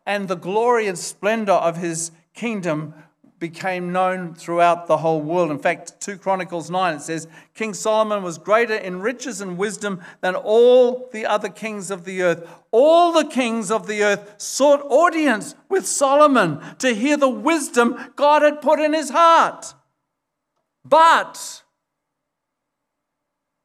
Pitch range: 150-215 Hz